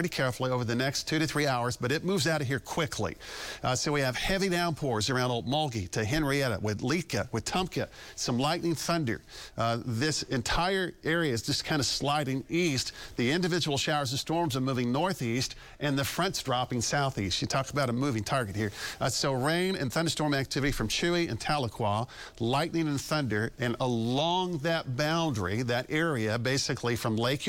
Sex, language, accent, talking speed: male, English, American, 185 wpm